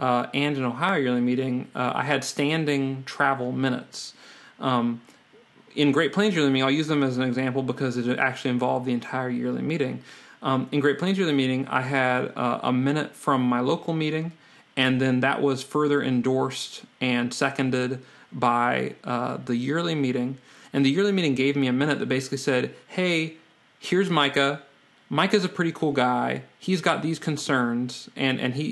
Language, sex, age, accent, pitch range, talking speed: English, male, 30-49, American, 130-150 Hz, 185 wpm